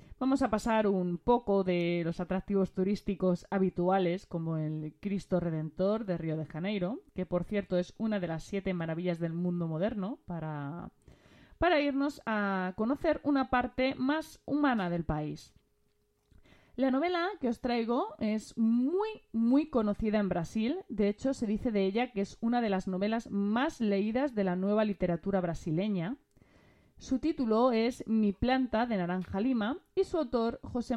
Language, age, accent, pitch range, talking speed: Spanish, 30-49, Spanish, 180-255 Hz, 160 wpm